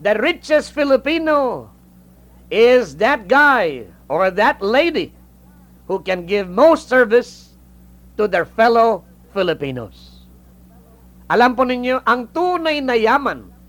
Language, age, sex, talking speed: English, 50-69, male, 110 wpm